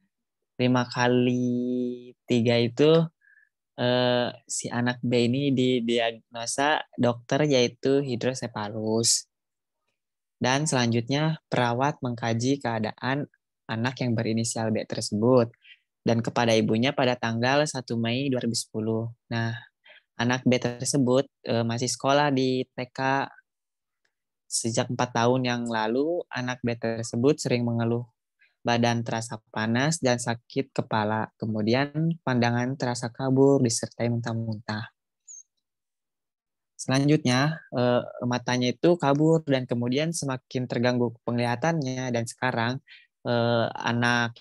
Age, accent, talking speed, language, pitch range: 20-39, native, 105 wpm, Indonesian, 115-135 Hz